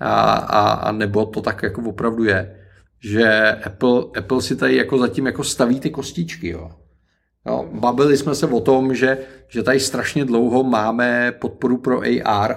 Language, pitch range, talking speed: Czech, 110-130 Hz, 160 wpm